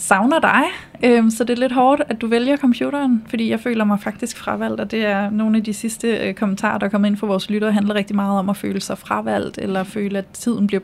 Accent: native